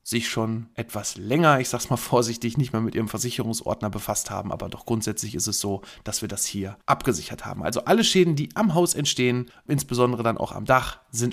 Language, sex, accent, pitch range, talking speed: German, male, German, 115-150 Hz, 215 wpm